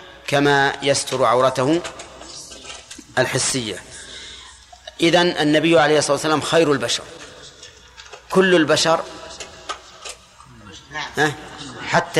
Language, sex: Arabic, male